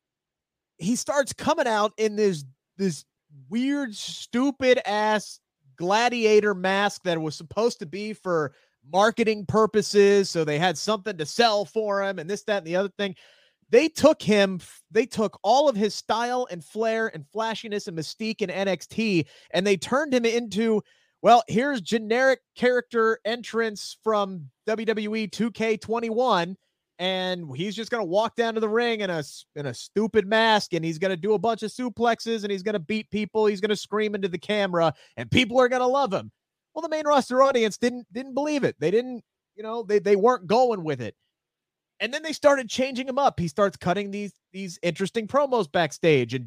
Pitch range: 185-235 Hz